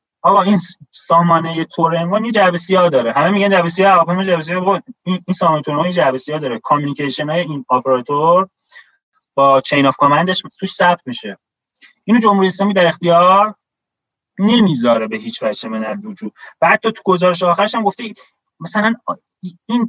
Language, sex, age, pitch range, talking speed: Persian, male, 30-49, 165-215 Hz, 155 wpm